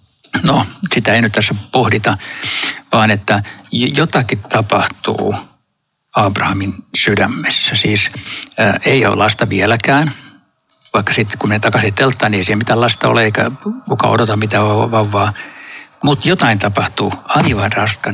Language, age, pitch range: Finnish, 60-79, 105-135 Hz